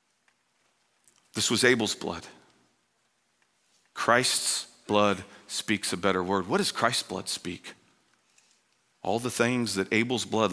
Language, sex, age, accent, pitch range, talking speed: English, male, 50-69, American, 95-110 Hz, 120 wpm